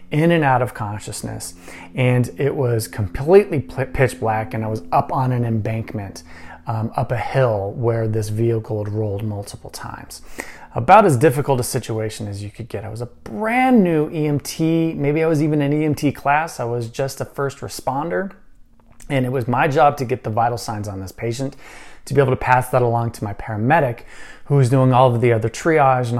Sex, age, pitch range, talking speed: male, 30-49, 110-140 Hz, 205 wpm